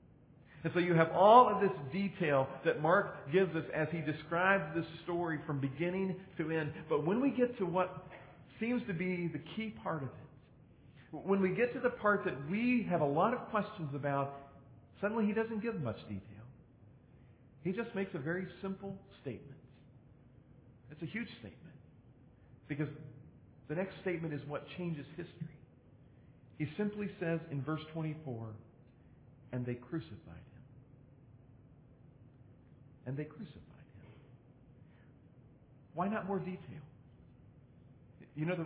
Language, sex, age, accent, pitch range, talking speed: English, male, 50-69, American, 130-165 Hz, 145 wpm